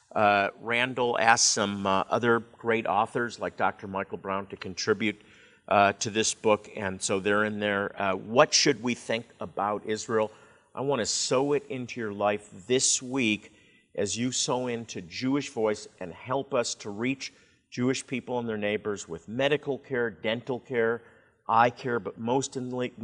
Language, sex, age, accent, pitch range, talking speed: English, male, 50-69, American, 105-125 Hz, 170 wpm